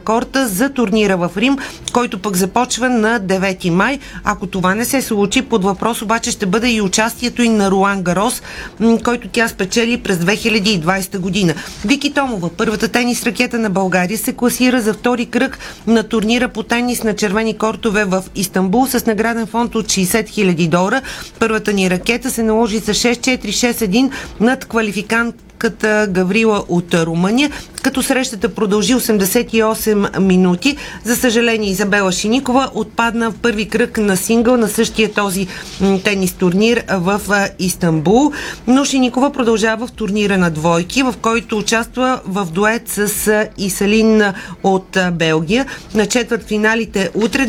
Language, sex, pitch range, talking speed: Bulgarian, female, 200-240 Hz, 150 wpm